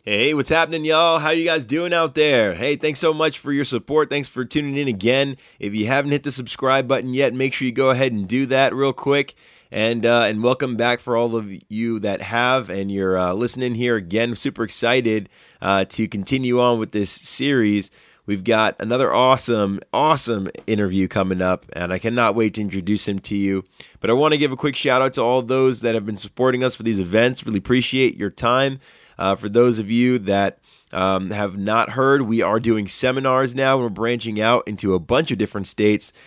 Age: 20-39